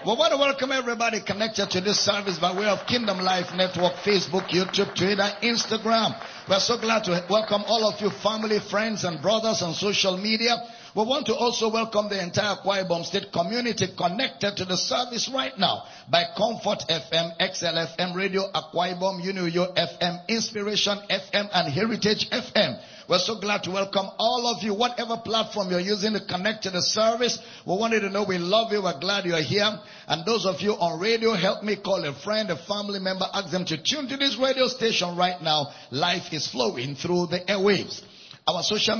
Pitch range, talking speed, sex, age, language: 175-225 Hz, 195 wpm, male, 60-79, English